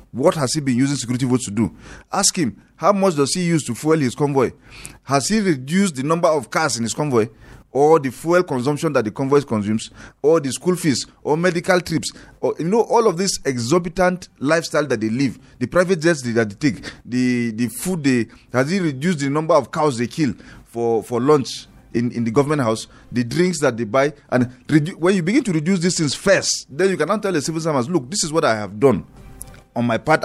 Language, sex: English, male